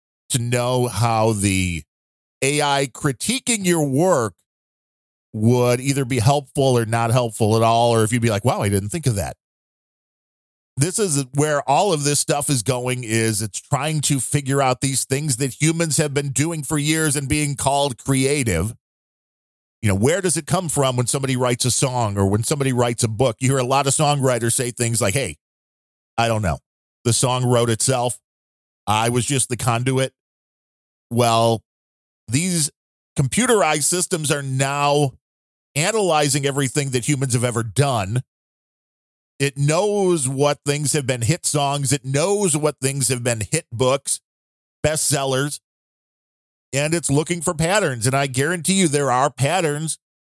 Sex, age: male, 40-59